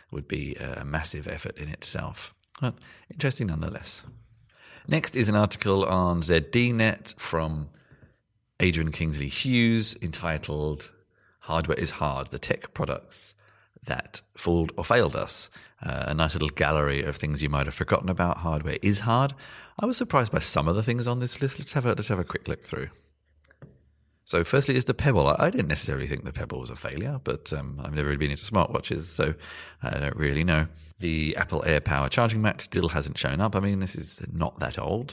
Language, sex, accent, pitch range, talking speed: English, male, British, 75-115 Hz, 185 wpm